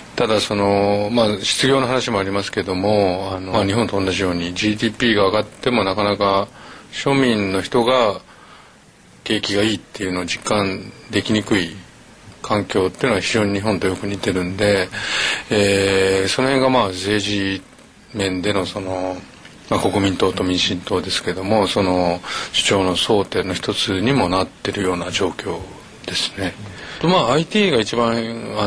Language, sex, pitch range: Japanese, male, 95-110 Hz